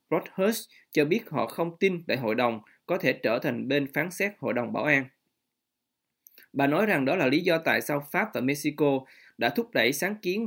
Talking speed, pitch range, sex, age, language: 205 wpm, 130-170 Hz, male, 20-39, Vietnamese